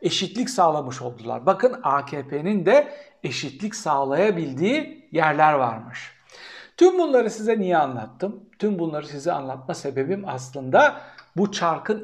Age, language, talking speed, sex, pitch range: 60-79, Turkish, 115 wpm, male, 150-225 Hz